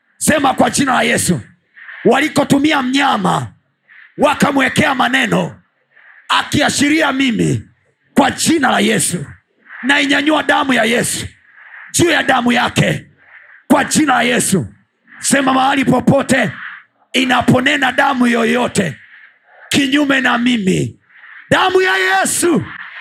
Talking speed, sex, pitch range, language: 105 wpm, male, 245-310 Hz, Swahili